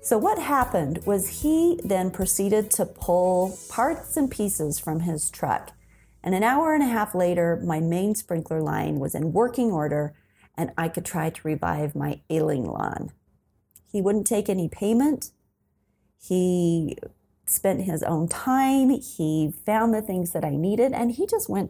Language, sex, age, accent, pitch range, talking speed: English, female, 40-59, American, 155-220 Hz, 165 wpm